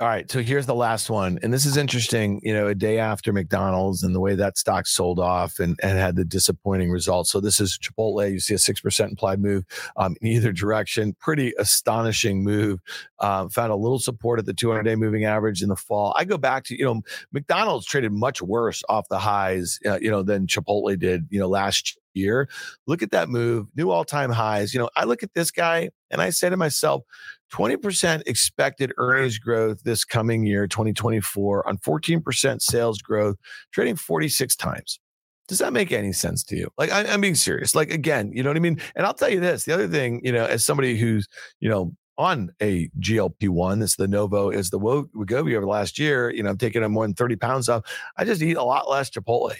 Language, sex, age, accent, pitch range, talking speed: English, male, 40-59, American, 100-130 Hz, 225 wpm